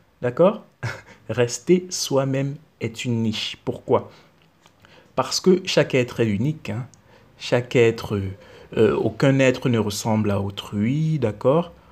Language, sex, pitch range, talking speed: French, male, 110-135 Hz, 120 wpm